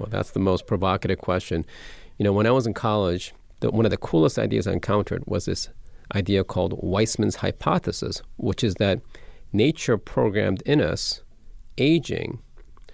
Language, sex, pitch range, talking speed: English, male, 85-105 Hz, 160 wpm